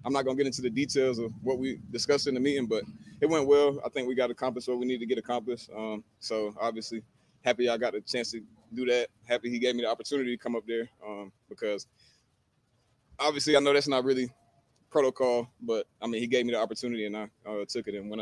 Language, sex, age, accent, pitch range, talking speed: English, male, 20-39, American, 115-135 Hz, 245 wpm